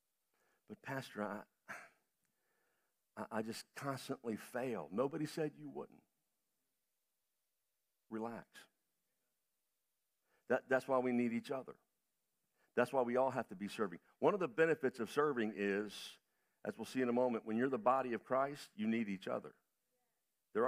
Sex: male